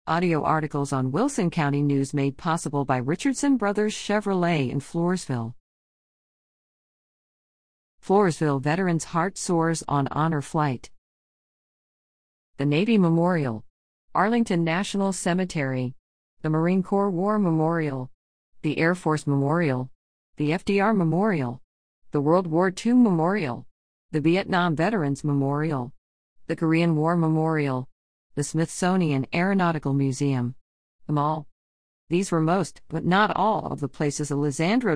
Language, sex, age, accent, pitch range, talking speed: English, female, 50-69, American, 140-185 Hz, 115 wpm